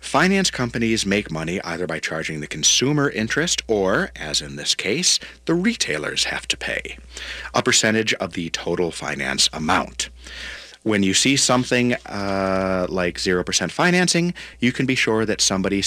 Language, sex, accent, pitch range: English, male, American, 85-120 Hz